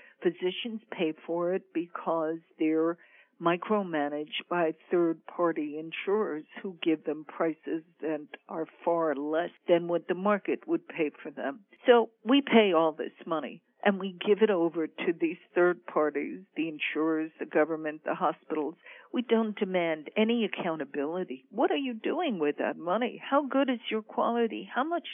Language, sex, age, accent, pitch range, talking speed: English, female, 60-79, American, 160-215 Hz, 160 wpm